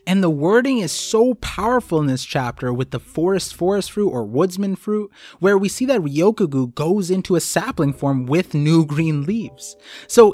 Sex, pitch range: male, 130-190 Hz